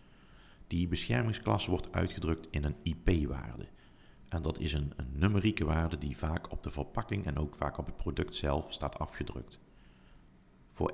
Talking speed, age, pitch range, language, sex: 160 wpm, 50-69, 75-90 Hz, Dutch, male